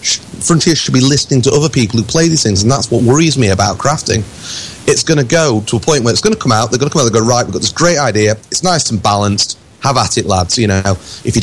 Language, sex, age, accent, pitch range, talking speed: English, male, 30-49, British, 110-140 Hz, 305 wpm